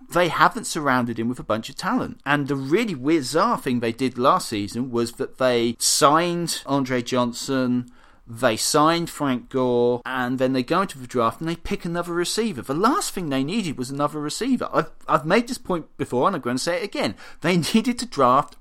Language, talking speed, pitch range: English, 210 wpm, 125-175 Hz